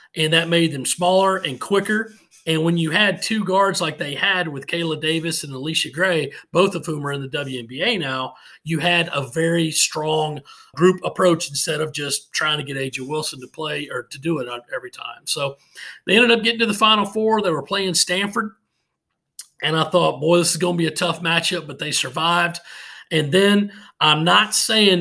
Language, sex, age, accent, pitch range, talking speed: English, male, 40-59, American, 155-185 Hz, 205 wpm